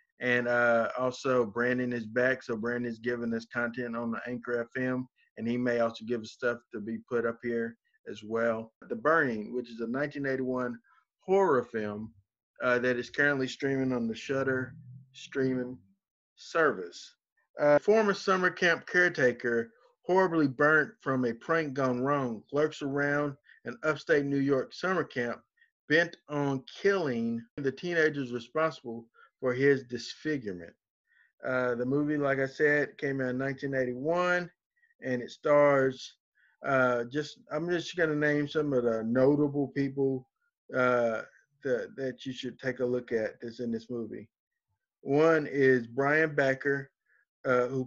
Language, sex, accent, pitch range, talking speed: English, male, American, 120-150 Hz, 150 wpm